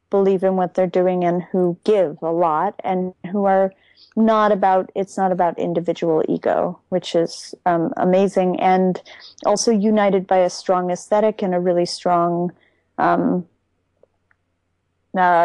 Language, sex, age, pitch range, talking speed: English, female, 30-49, 180-205 Hz, 145 wpm